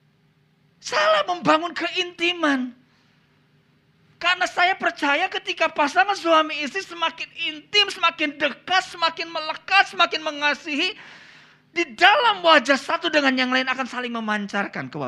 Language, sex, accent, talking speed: Indonesian, male, native, 110 wpm